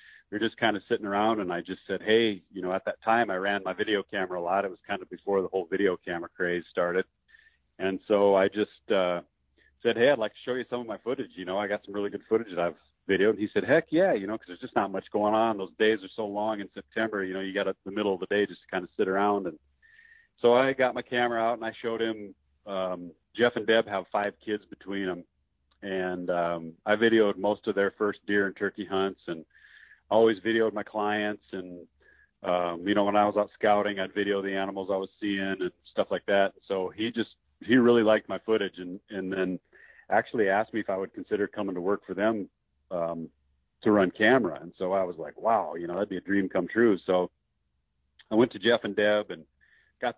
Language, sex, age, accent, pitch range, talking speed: English, male, 40-59, American, 90-105 Hz, 245 wpm